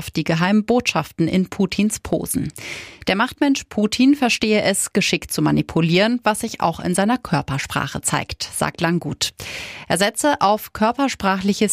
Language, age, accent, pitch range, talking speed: German, 30-49, German, 170-220 Hz, 140 wpm